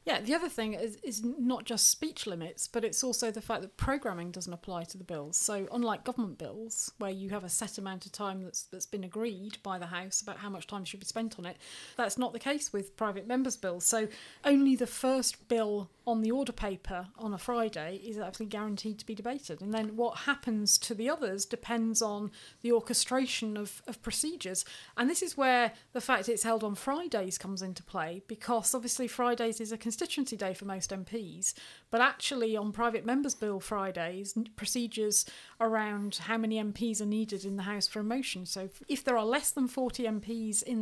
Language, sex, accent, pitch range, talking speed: English, female, British, 200-240 Hz, 210 wpm